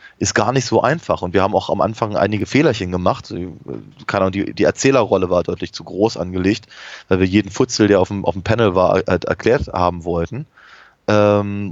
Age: 30-49